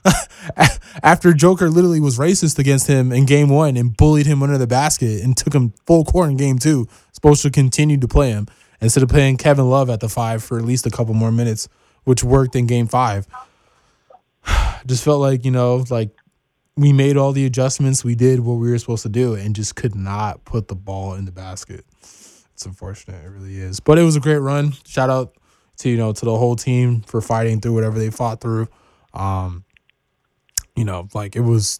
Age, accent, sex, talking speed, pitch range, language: 20-39, American, male, 210 wpm, 115-155 Hz, English